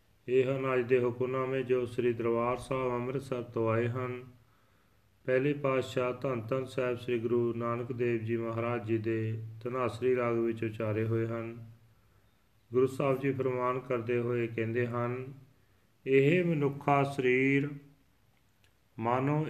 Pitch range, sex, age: 115-135 Hz, male, 40-59